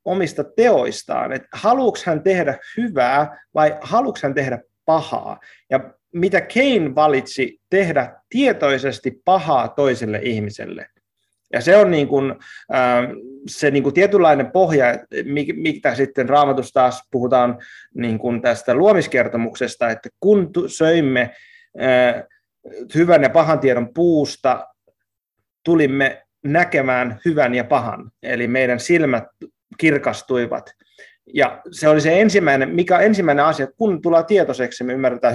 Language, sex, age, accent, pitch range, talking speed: Finnish, male, 30-49, native, 130-180 Hz, 120 wpm